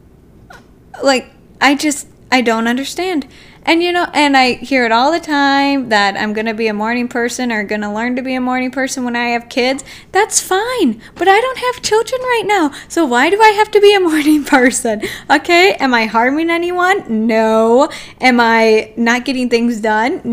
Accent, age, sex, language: American, 10-29, female, English